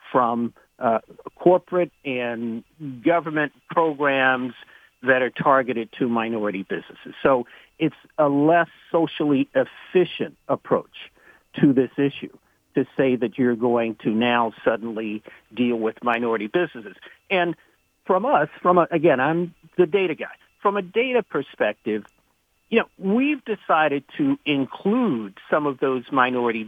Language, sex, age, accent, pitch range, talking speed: English, male, 50-69, American, 120-175 Hz, 130 wpm